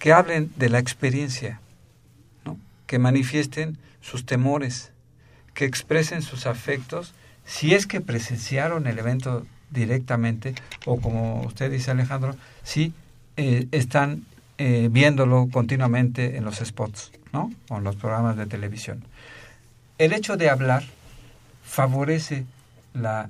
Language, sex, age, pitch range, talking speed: Spanish, male, 50-69, 120-145 Hz, 125 wpm